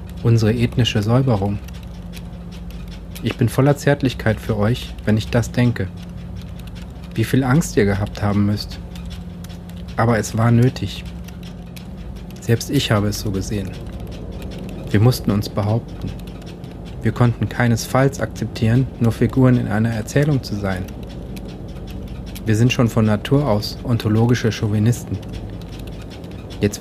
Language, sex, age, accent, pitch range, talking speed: German, male, 40-59, German, 90-120 Hz, 120 wpm